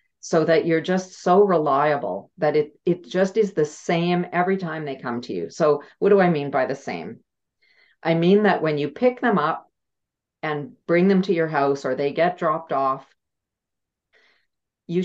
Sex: female